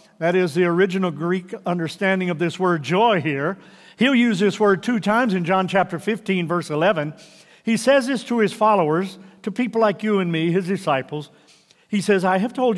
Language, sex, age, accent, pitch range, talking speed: English, male, 50-69, American, 175-210 Hz, 195 wpm